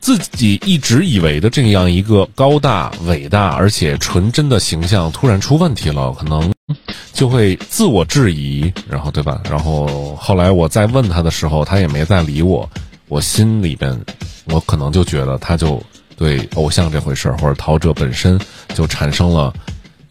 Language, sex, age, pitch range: Chinese, male, 30-49, 80-115 Hz